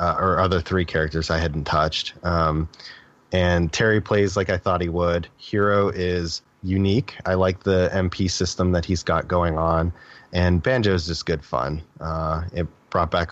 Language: English